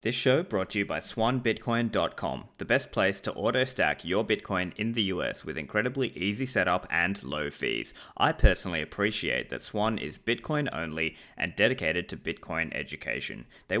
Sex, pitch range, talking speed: male, 90-130 Hz, 165 wpm